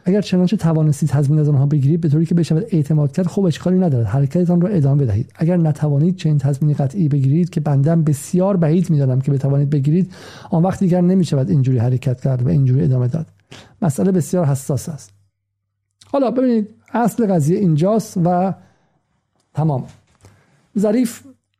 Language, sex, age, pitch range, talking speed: Persian, male, 50-69, 130-165 Hz, 160 wpm